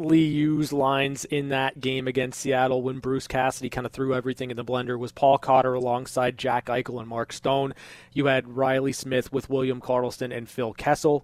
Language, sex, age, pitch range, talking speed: English, male, 20-39, 125-145 Hz, 190 wpm